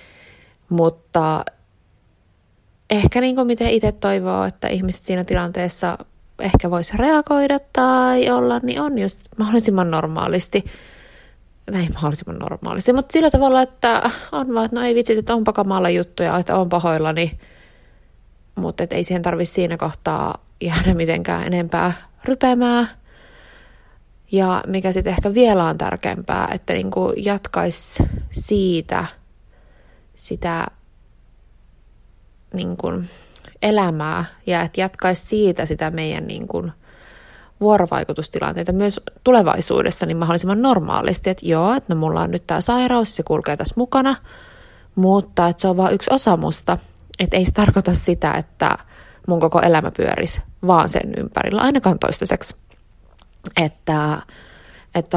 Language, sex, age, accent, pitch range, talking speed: Finnish, female, 20-39, native, 160-215 Hz, 125 wpm